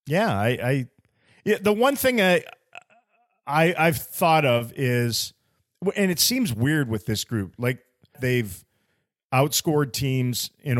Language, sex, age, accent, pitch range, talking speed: English, male, 40-59, American, 110-140 Hz, 140 wpm